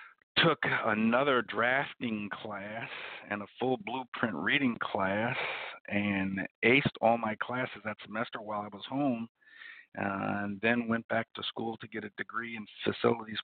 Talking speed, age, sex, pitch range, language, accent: 145 wpm, 50-69, male, 105-120 Hz, English, American